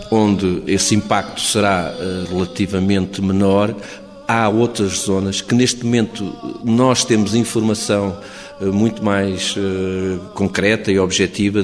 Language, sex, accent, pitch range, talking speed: Portuguese, male, Portuguese, 100-115 Hz, 105 wpm